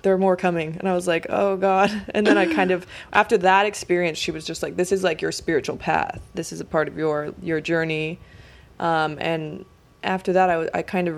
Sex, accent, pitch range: female, American, 165-205 Hz